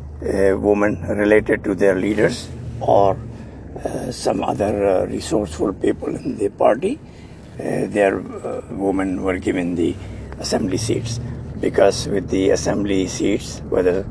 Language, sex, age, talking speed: English, male, 60-79, 130 wpm